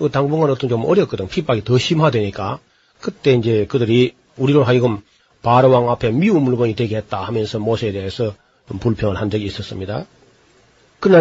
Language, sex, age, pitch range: Korean, male, 40-59, 115-150 Hz